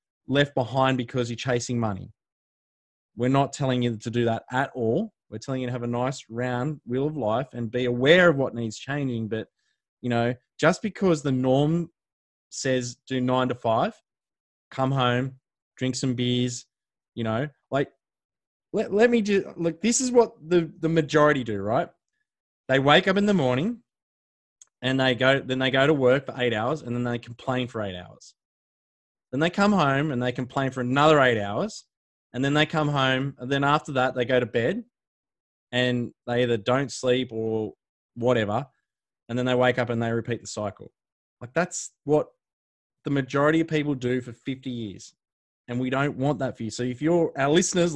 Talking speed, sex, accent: 195 wpm, male, Australian